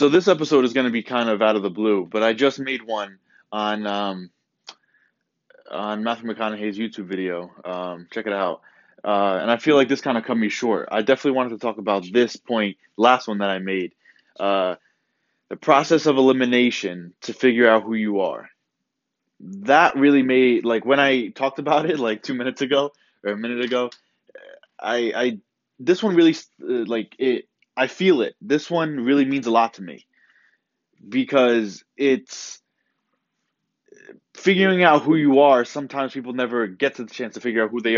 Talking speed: 190 wpm